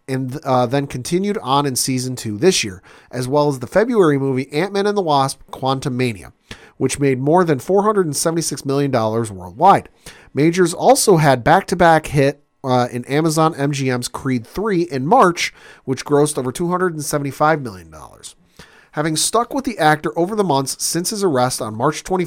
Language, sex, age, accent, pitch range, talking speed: English, male, 40-59, American, 125-170 Hz, 160 wpm